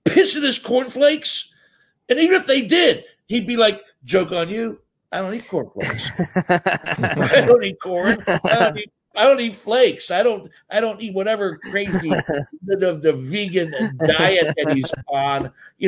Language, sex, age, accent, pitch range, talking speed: English, male, 60-79, American, 125-185 Hz, 175 wpm